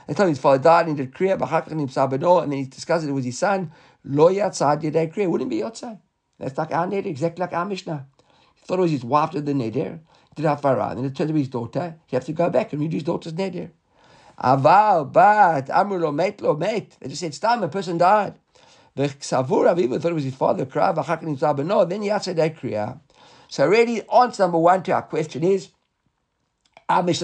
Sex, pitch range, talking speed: male, 140-190 Hz, 210 wpm